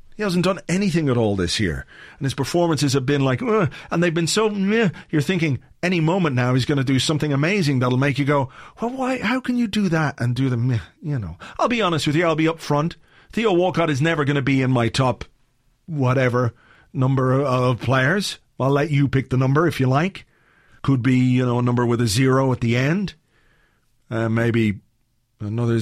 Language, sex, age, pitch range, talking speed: English, male, 40-59, 120-165 Hz, 220 wpm